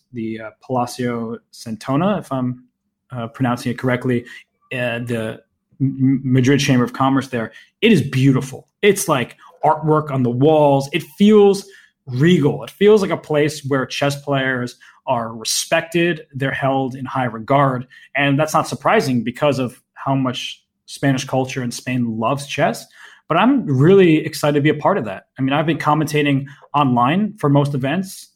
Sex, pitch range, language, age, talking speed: male, 125-155 Hz, English, 20-39, 165 wpm